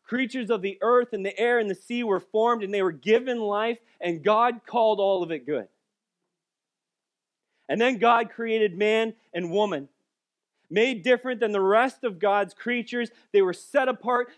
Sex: male